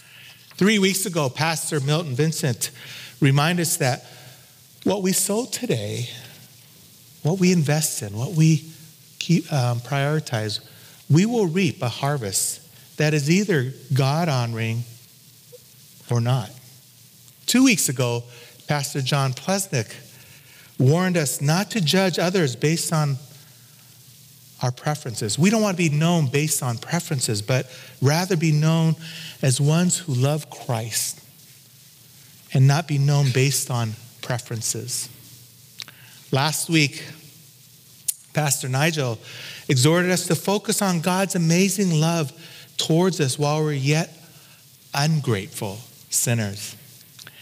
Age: 40-59